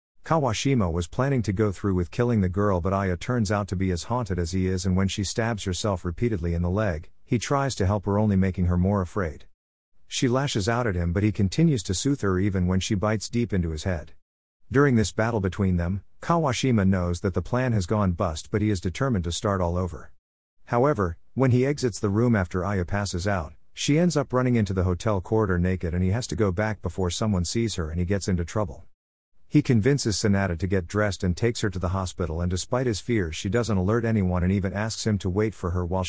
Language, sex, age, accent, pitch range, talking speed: English, male, 50-69, American, 90-115 Hz, 240 wpm